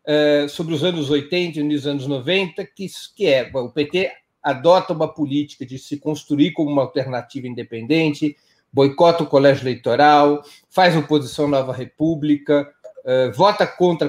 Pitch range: 145-175 Hz